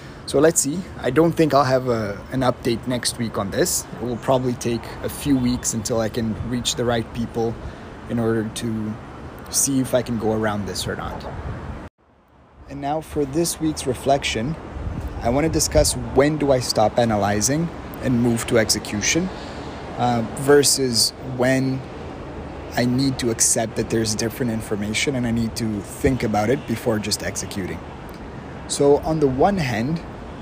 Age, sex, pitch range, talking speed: 30-49, male, 105-130 Hz, 165 wpm